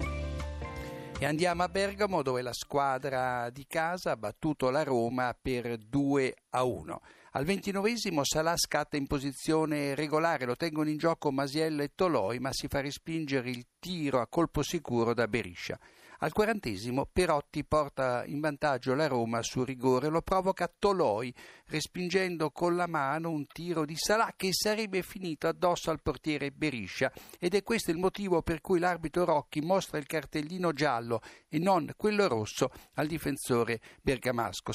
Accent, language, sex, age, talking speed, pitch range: native, Italian, male, 60-79, 150 wpm, 130-170 Hz